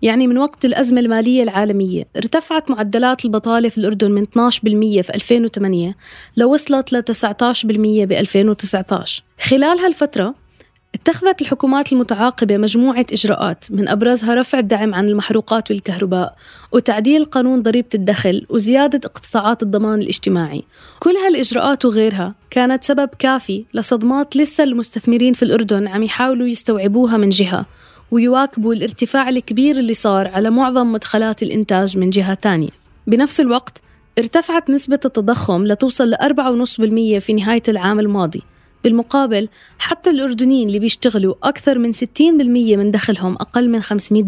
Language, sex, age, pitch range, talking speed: Arabic, female, 20-39, 205-255 Hz, 130 wpm